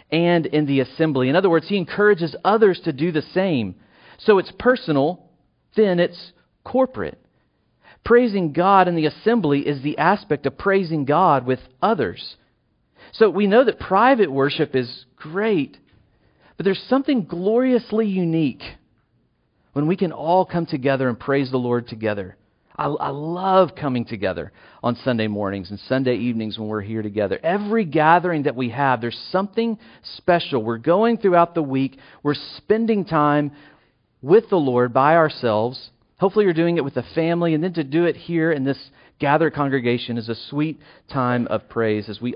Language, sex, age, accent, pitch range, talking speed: English, male, 40-59, American, 125-185 Hz, 165 wpm